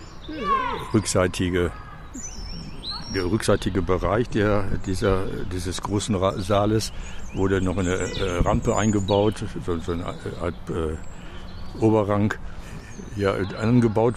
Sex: male